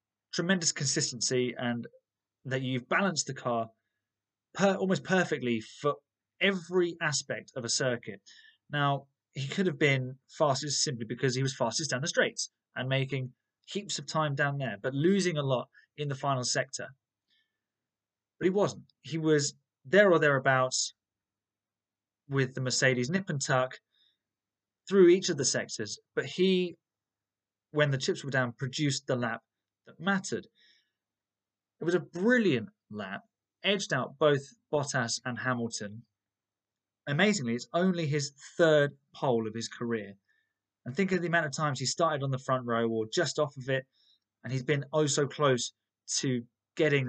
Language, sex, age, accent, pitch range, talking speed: English, male, 20-39, British, 115-155 Hz, 155 wpm